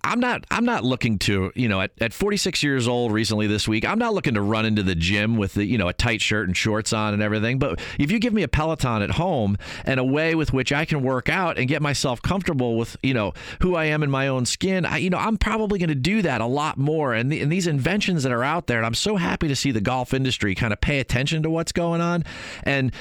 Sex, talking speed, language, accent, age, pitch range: male, 280 wpm, English, American, 40-59, 110-150 Hz